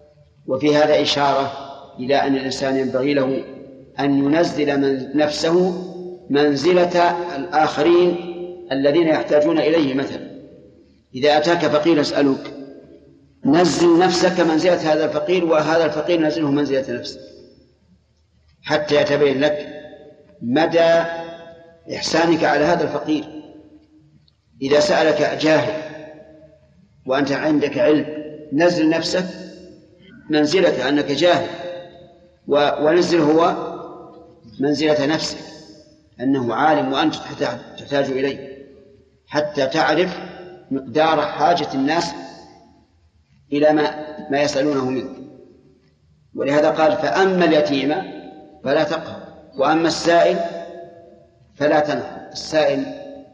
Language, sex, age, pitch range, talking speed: Arabic, male, 50-69, 140-170 Hz, 90 wpm